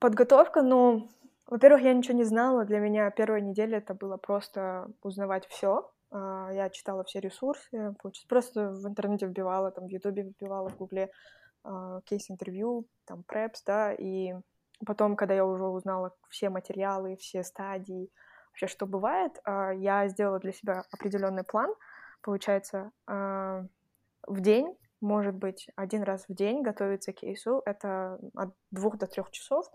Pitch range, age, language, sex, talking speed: 190-220 Hz, 20-39, Russian, female, 145 wpm